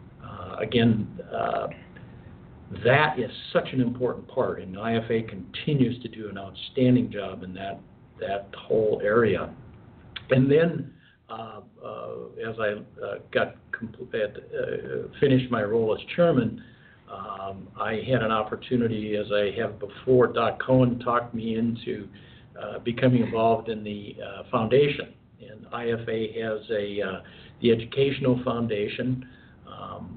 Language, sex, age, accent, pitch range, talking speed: English, male, 60-79, American, 110-130 Hz, 135 wpm